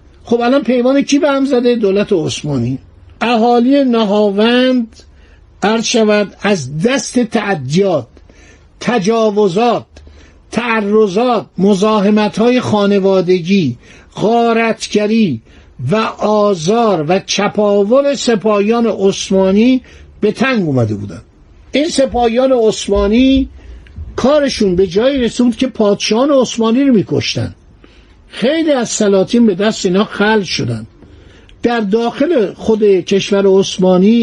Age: 60-79